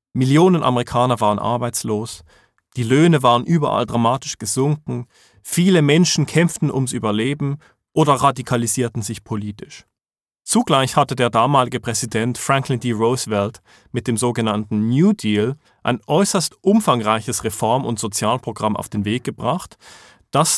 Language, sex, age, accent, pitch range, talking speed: English, male, 40-59, German, 115-145 Hz, 125 wpm